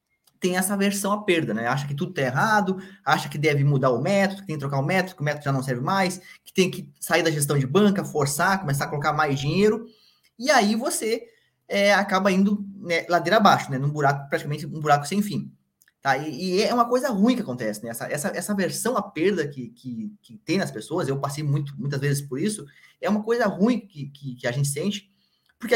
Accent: Brazilian